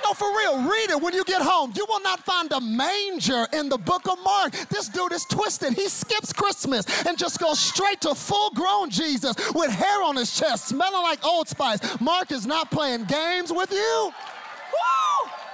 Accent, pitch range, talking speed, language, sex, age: American, 285-390 Hz, 195 wpm, English, male, 30-49